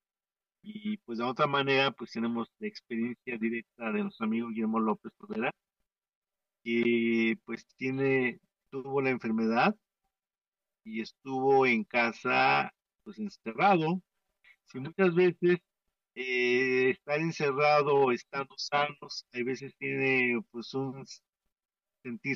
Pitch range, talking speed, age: 130-195 Hz, 115 wpm, 50-69